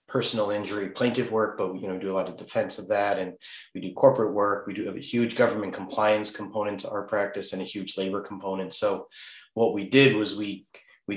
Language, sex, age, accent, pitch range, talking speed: English, male, 30-49, American, 95-105 Hz, 220 wpm